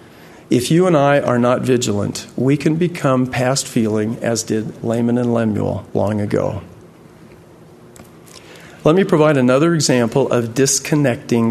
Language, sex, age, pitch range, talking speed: English, male, 40-59, 115-150 Hz, 130 wpm